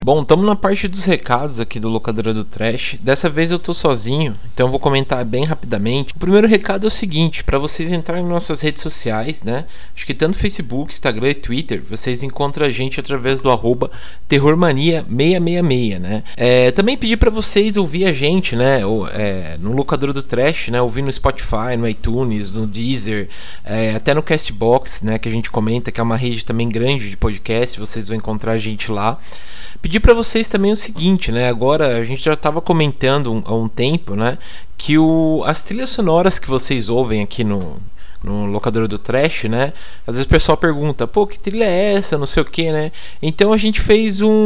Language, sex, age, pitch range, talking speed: Portuguese, male, 20-39, 115-165 Hz, 200 wpm